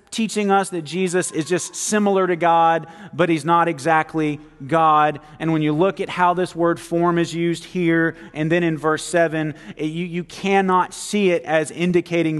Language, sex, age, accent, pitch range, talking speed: English, male, 30-49, American, 155-185 Hz, 190 wpm